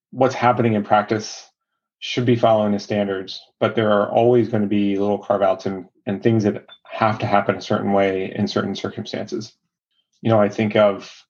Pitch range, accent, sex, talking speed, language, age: 100-110 Hz, American, male, 185 wpm, English, 30-49